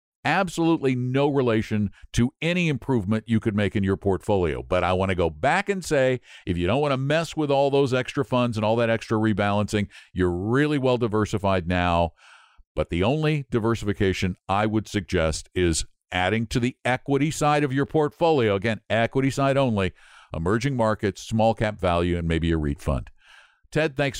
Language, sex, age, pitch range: English, male, 50-69, 95-125 Hz